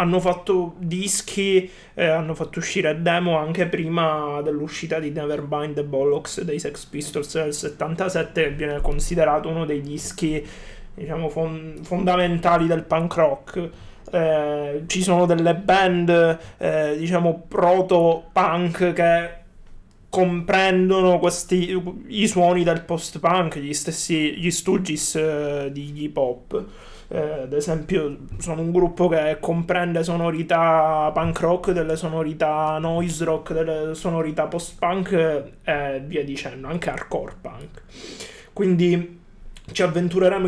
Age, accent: 20-39, native